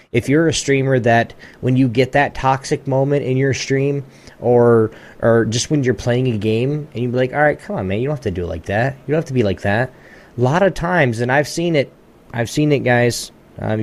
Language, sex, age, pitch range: English, male, 20-39, 110-140 Hz